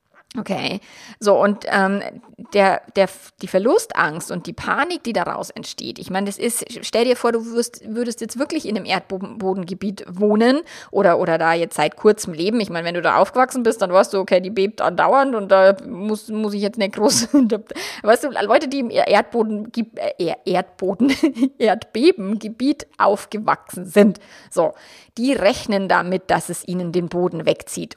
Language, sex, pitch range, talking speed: German, female, 190-230 Hz, 170 wpm